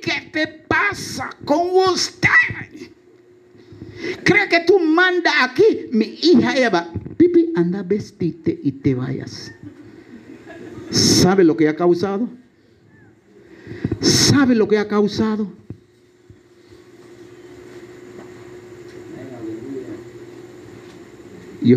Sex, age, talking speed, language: male, 50-69, 85 wpm, Spanish